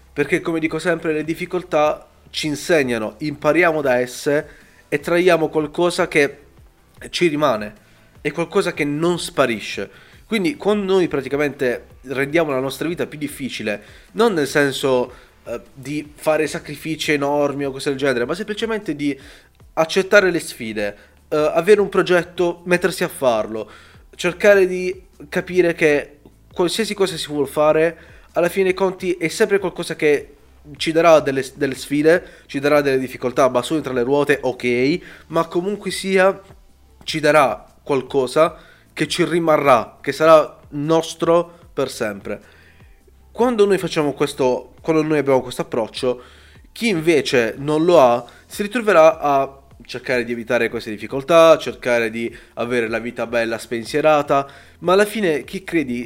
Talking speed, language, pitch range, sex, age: 145 wpm, Italian, 125-170 Hz, male, 20-39